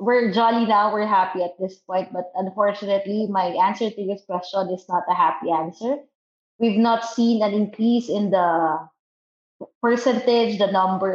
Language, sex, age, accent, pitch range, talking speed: English, female, 20-39, Filipino, 185-220 Hz, 160 wpm